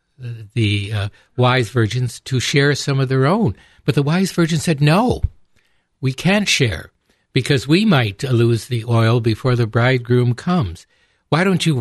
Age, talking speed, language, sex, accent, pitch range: 60-79, 165 wpm, English, male, American, 110-155 Hz